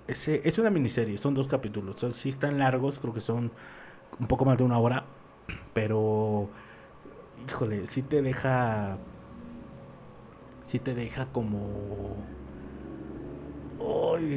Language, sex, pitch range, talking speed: Spanish, male, 110-140 Hz, 140 wpm